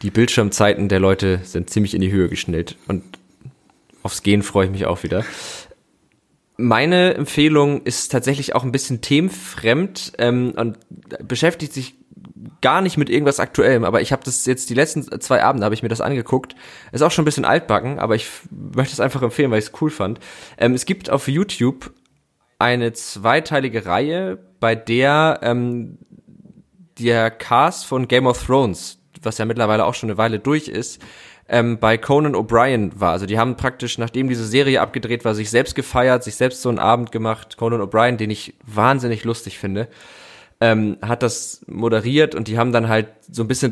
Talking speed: 185 wpm